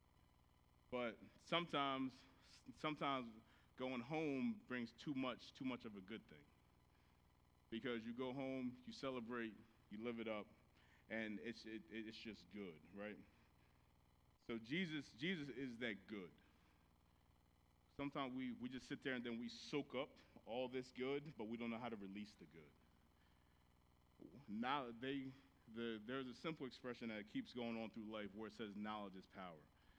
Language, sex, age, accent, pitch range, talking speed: English, male, 30-49, American, 100-130 Hz, 160 wpm